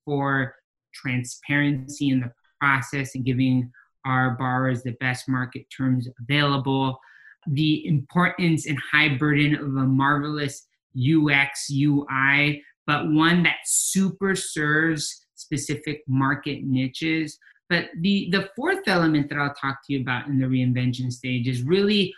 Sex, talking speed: male, 135 wpm